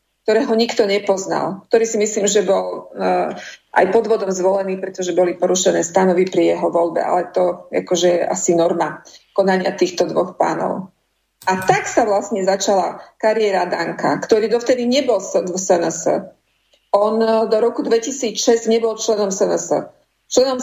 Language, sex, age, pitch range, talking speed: Slovak, female, 40-59, 185-225 Hz, 140 wpm